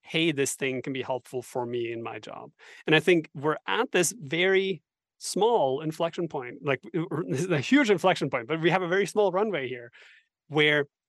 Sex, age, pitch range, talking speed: male, 30-49, 135-175 Hz, 190 wpm